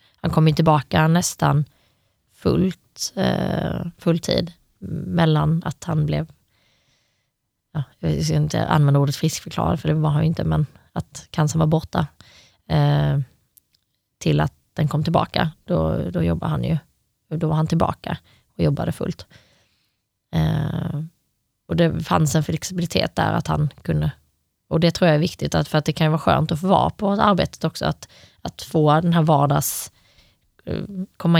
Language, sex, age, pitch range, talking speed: Swedish, female, 20-39, 145-165 Hz, 155 wpm